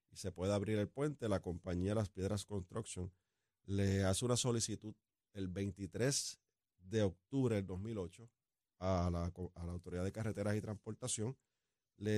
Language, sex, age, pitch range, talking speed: Spanish, male, 40-59, 100-135 Hz, 150 wpm